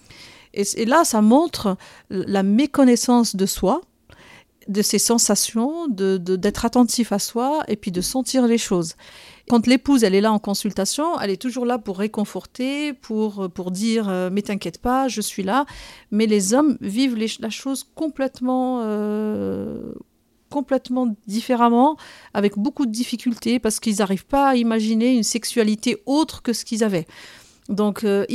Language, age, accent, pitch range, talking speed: French, 40-59, French, 200-240 Hz, 165 wpm